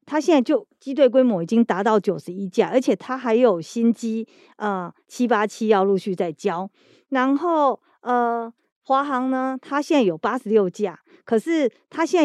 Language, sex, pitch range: Chinese, female, 210-275 Hz